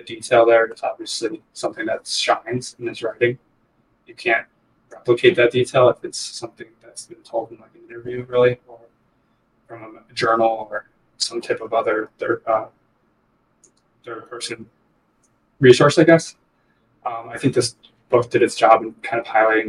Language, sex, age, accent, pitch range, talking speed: English, male, 20-39, American, 115-165 Hz, 160 wpm